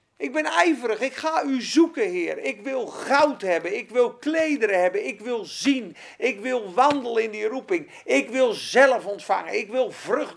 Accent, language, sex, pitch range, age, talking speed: Dutch, Dutch, male, 215-310 Hz, 40-59, 185 wpm